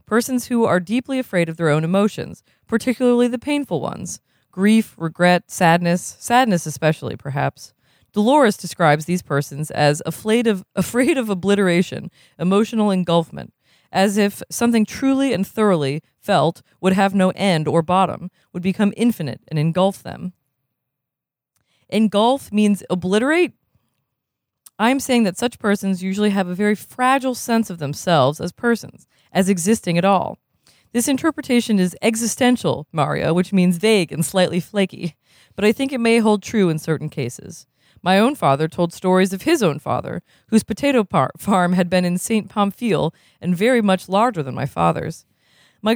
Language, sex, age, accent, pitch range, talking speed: English, female, 20-39, American, 165-225 Hz, 150 wpm